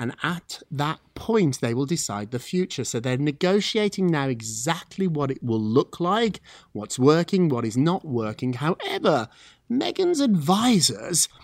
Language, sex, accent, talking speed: English, male, British, 145 wpm